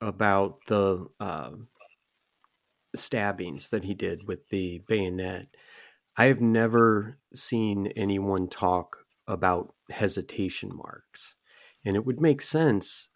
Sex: male